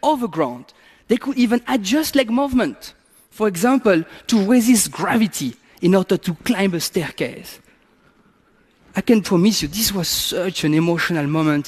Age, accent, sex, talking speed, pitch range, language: 40-59, French, male, 145 wpm, 160-225 Hz, English